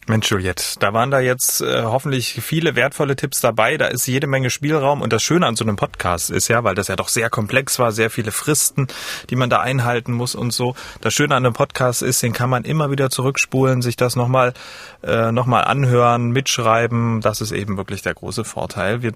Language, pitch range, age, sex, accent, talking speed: German, 115-140 Hz, 30-49, male, German, 220 wpm